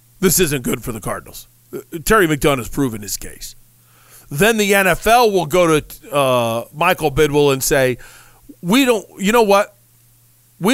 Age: 40-59